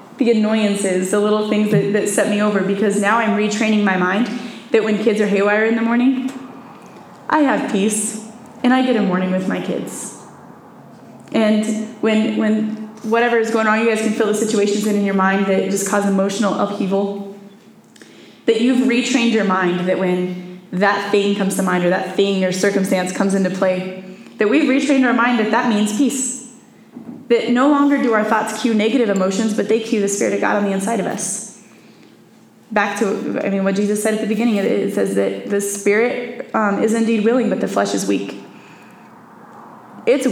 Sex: female